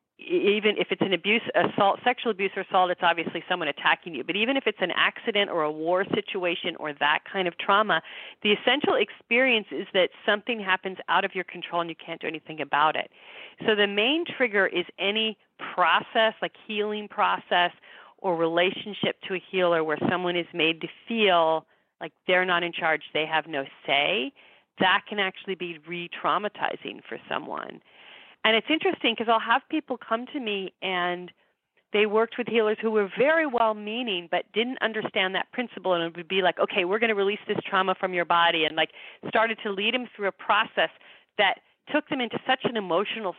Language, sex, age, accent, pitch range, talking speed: English, female, 40-59, American, 175-220 Hz, 195 wpm